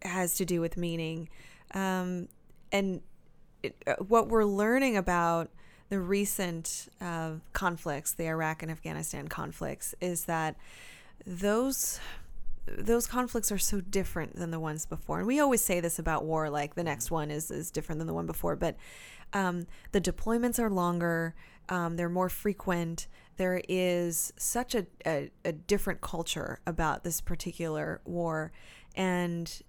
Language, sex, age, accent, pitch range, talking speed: English, female, 20-39, American, 165-195 Hz, 150 wpm